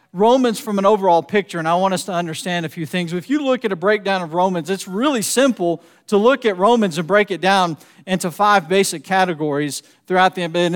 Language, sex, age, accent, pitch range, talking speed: English, male, 40-59, American, 185-235 Hz, 225 wpm